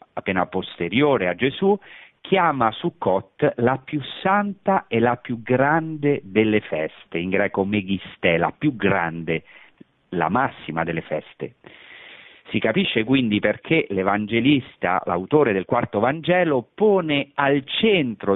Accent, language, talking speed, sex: native, Italian, 120 wpm, male